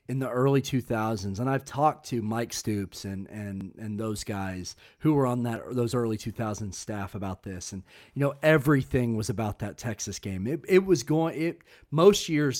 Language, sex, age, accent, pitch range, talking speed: English, male, 40-59, American, 105-135 Hz, 195 wpm